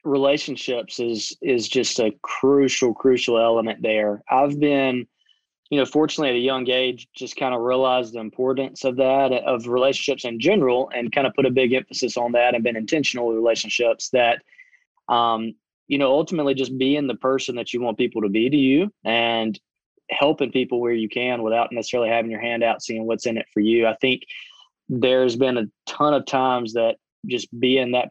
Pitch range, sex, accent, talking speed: 120-140 Hz, male, American, 195 wpm